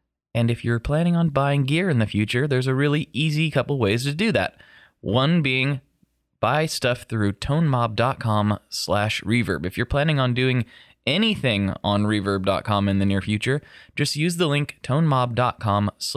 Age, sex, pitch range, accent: 20-39, male, 100-135 Hz, American